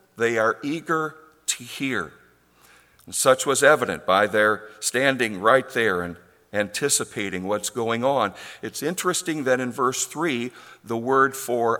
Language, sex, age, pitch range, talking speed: English, male, 50-69, 100-135 Hz, 140 wpm